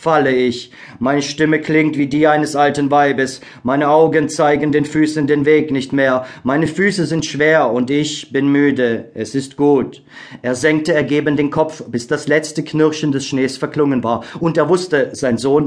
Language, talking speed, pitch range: German, 185 wpm, 130-150 Hz